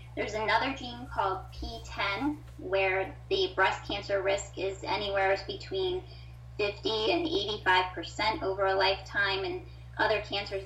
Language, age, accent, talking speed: English, 20-39, American, 125 wpm